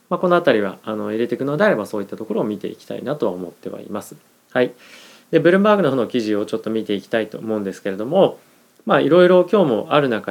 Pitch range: 110-160 Hz